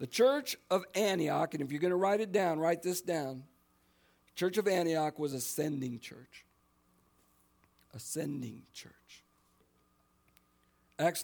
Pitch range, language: 125-175 Hz, English